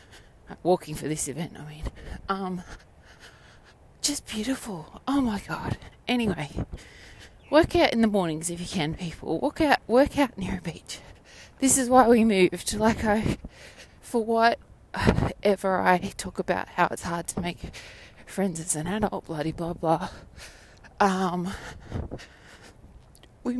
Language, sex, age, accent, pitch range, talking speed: English, female, 20-39, Australian, 170-220 Hz, 145 wpm